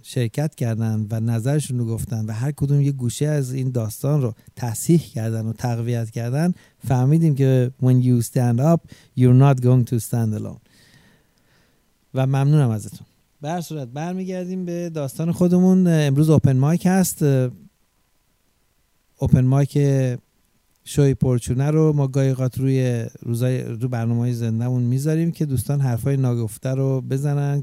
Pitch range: 120-145 Hz